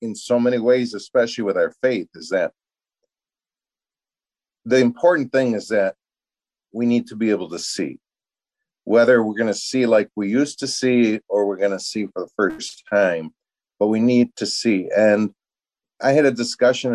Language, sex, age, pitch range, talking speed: English, male, 40-59, 100-120 Hz, 180 wpm